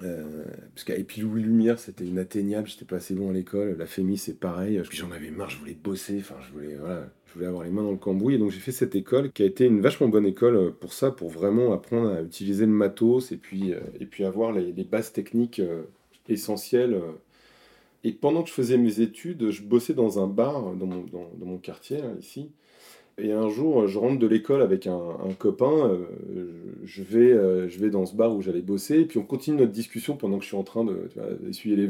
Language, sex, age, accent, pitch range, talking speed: French, male, 30-49, French, 95-115 Hz, 235 wpm